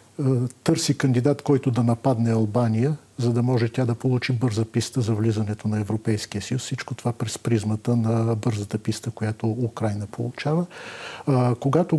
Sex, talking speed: male, 150 wpm